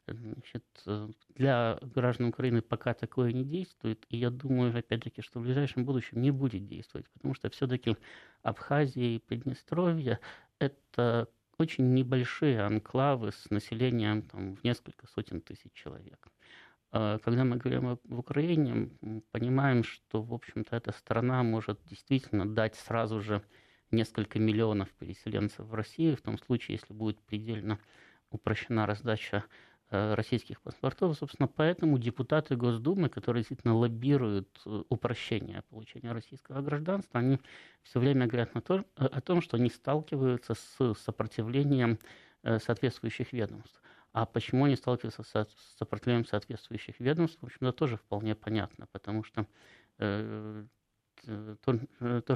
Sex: male